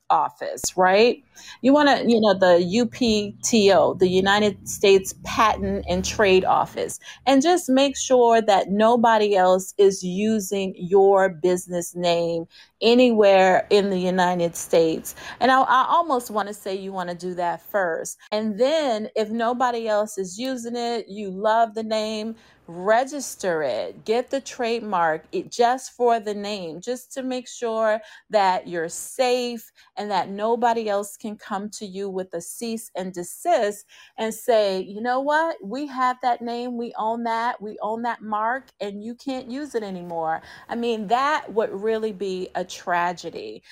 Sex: female